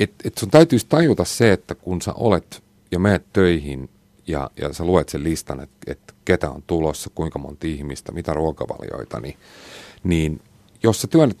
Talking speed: 180 wpm